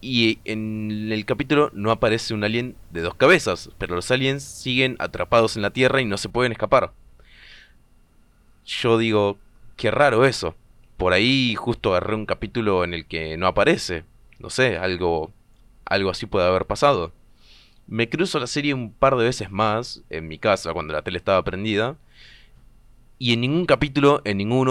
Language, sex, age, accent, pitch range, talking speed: Spanish, male, 20-39, Argentinian, 100-125 Hz, 170 wpm